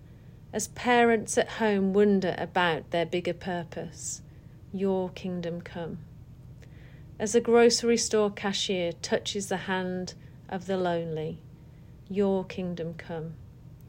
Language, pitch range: English, 150-210 Hz